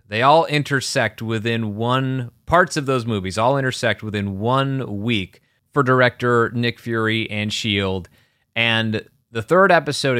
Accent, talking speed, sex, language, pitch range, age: American, 140 wpm, male, English, 110-130 Hz, 30-49